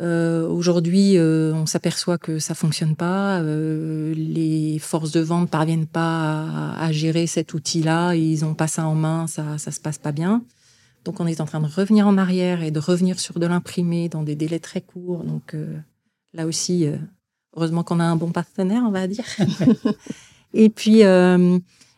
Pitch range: 165-185 Hz